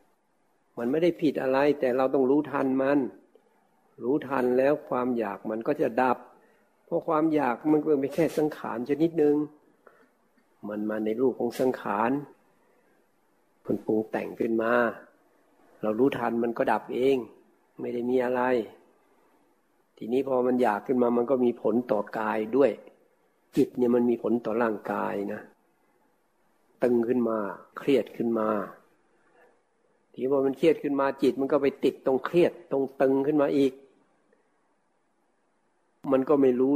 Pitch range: 110-145 Hz